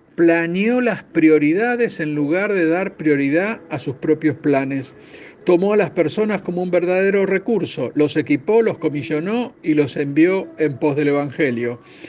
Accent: Argentinian